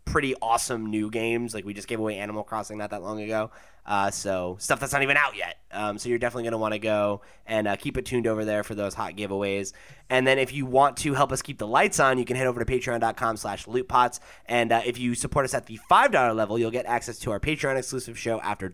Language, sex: English, male